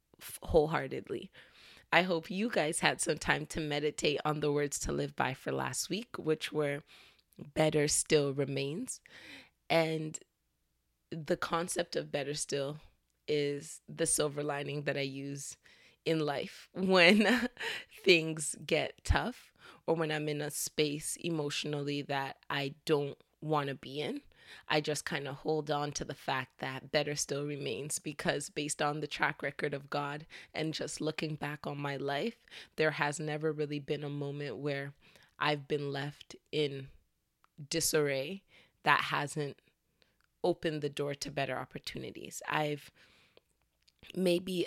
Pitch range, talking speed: 140-160 Hz, 145 wpm